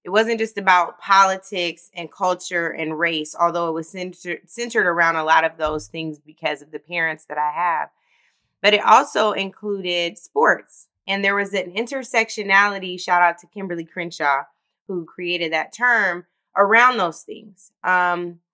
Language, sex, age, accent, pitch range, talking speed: English, female, 20-39, American, 150-180 Hz, 160 wpm